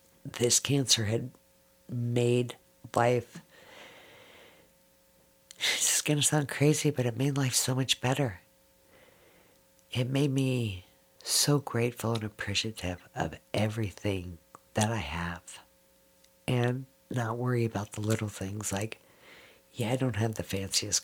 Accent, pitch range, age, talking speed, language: American, 95-130 Hz, 50-69, 125 wpm, English